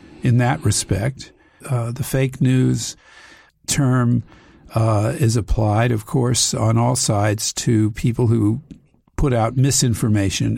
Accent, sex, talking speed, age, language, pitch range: American, male, 125 wpm, 50-69, English, 115-145 Hz